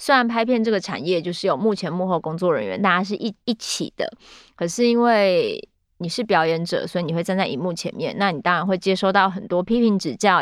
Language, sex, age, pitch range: Chinese, female, 30-49, 180-225 Hz